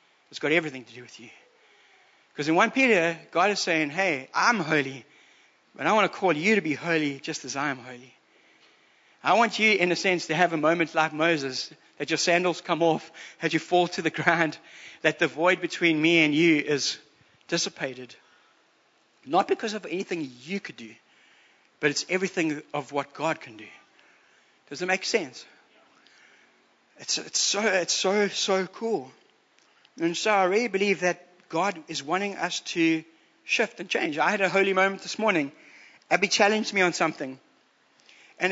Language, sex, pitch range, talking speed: English, male, 155-200 Hz, 180 wpm